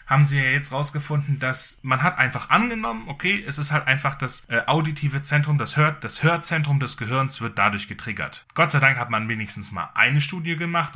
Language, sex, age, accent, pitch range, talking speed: German, male, 10-29, German, 125-170 Hz, 210 wpm